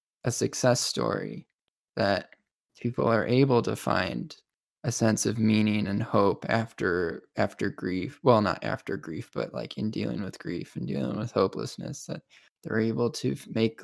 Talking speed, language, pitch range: 160 wpm, English, 110-120 Hz